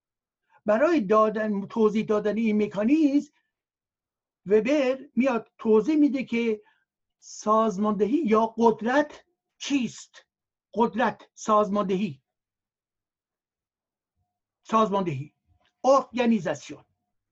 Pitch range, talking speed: 170-245 Hz, 65 wpm